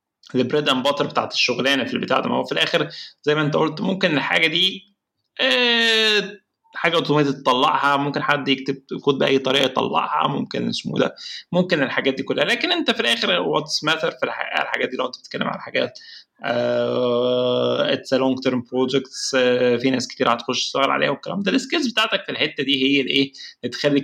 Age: 20-39